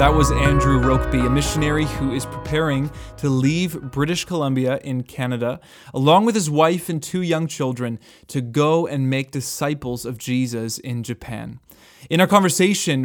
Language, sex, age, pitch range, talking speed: English, male, 20-39, 125-160 Hz, 160 wpm